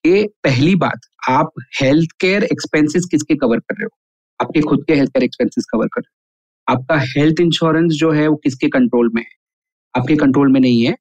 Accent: native